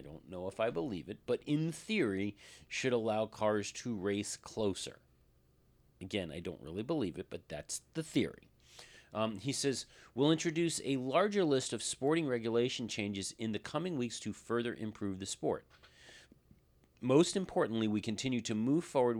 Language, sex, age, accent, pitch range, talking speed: English, male, 40-59, American, 95-125 Hz, 170 wpm